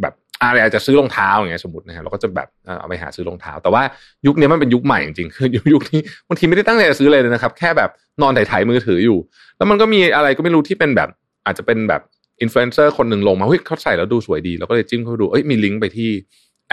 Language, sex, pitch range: Thai, male, 90-125 Hz